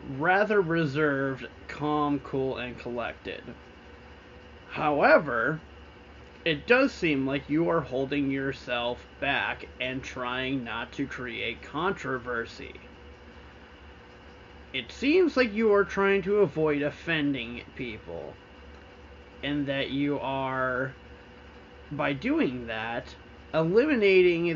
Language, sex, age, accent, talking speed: English, male, 30-49, American, 100 wpm